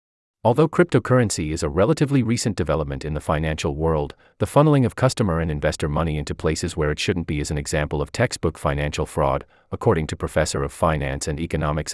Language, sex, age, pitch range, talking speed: English, male, 40-59, 75-115 Hz, 190 wpm